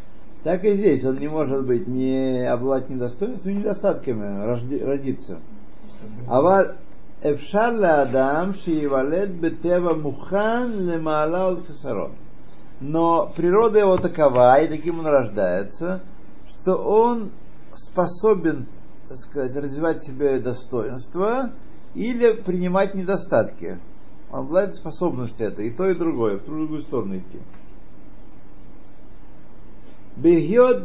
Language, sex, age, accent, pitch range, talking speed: Russian, male, 60-79, native, 135-190 Hz, 90 wpm